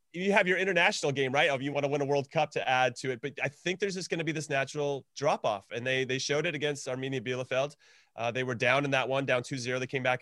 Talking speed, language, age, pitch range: 290 wpm, English, 30-49, 130-170 Hz